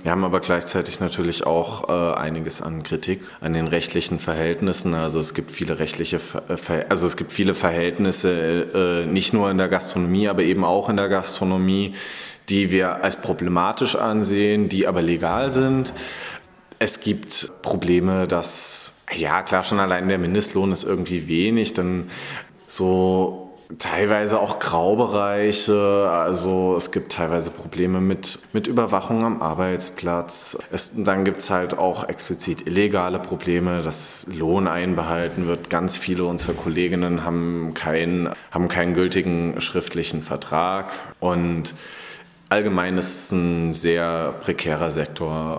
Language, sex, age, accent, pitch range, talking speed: German, male, 30-49, German, 85-95 Hz, 140 wpm